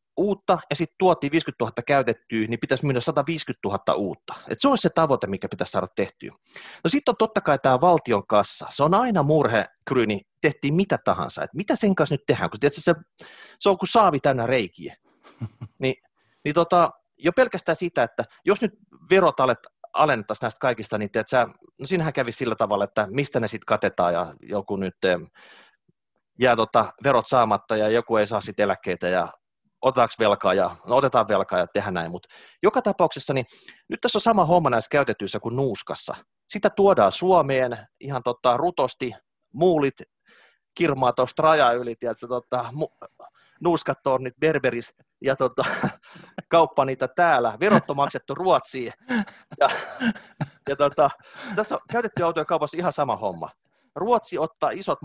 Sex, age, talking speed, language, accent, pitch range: male, 30-49, 160 wpm, Finnish, native, 125-180 Hz